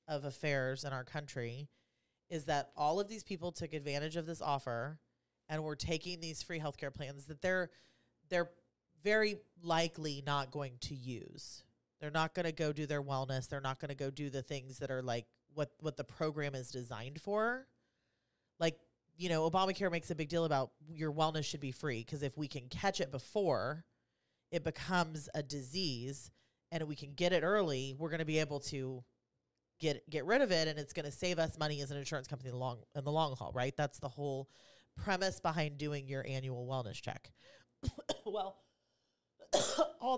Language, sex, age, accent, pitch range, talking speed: English, female, 30-49, American, 140-170 Hz, 195 wpm